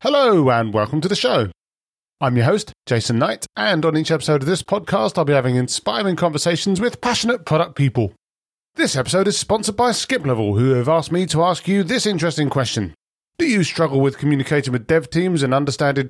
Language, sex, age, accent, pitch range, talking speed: English, male, 40-59, British, 130-180 Hz, 200 wpm